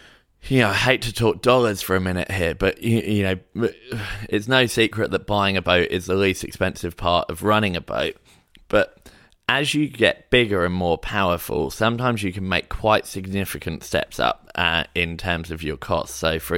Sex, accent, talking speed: male, British, 195 wpm